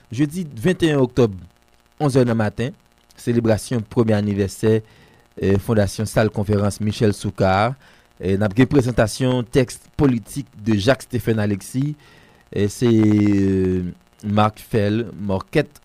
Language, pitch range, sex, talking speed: French, 100-125 Hz, male, 115 wpm